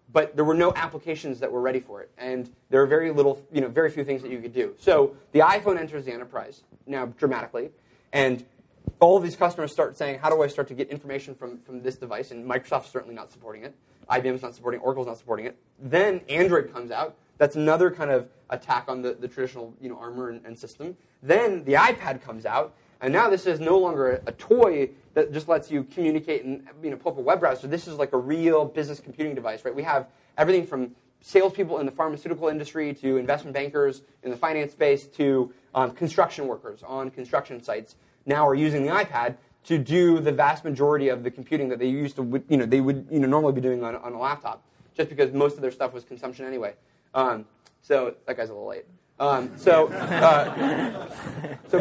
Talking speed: 220 wpm